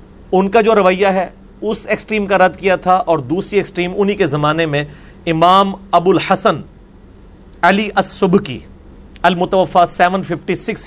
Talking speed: 150 wpm